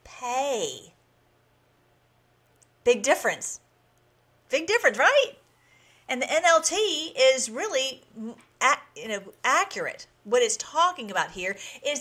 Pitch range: 210-285 Hz